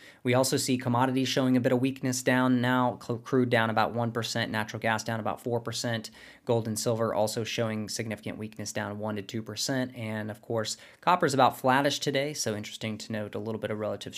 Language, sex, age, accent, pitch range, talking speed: English, male, 20-39, American, 110-125 Hz, 205 wpm